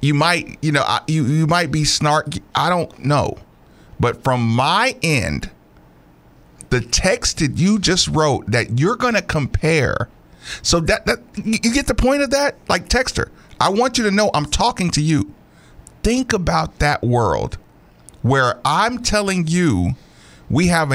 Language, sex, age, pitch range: English, male, 50-69, 130-210 Hz